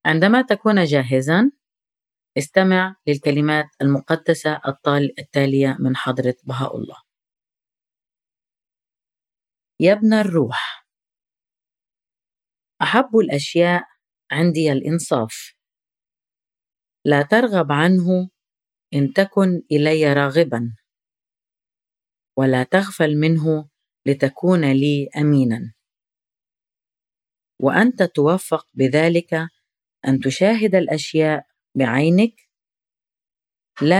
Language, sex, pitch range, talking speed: English, female, 135-175 Hz, 70 wpm